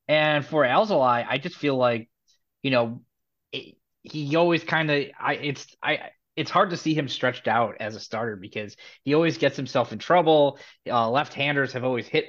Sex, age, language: male, 20-39, English